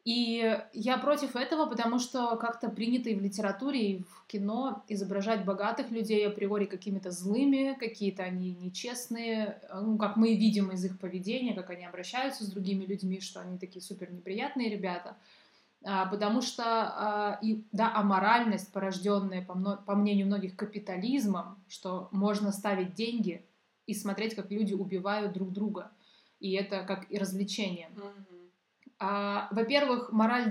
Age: 20-39